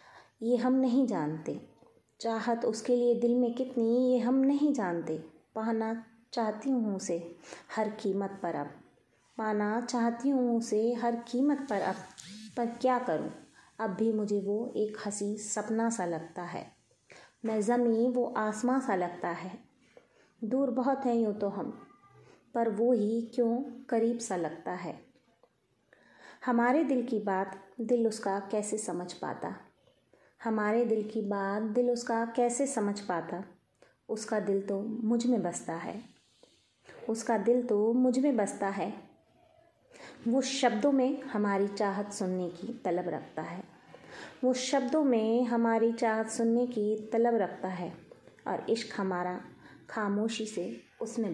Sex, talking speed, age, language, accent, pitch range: female, 145 wpm, 20-39, Hindi, native, 205-245 Hz